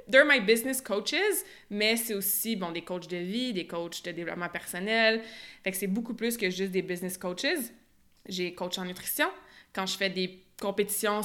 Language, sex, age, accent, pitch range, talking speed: French, female, 20-39, Canadian, 190-235 Hz, 190 wpm